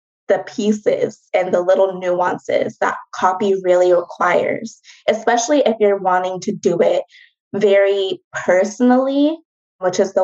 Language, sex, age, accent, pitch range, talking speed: English, female, 20-39, American, 190-255 Hz, 130 wpm